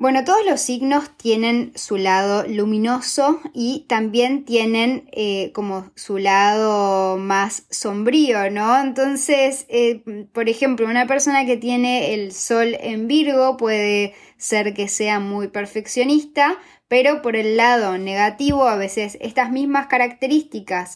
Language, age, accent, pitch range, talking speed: Spanish, 20-39, Argentinian, 215-270 Hz, 130 wpm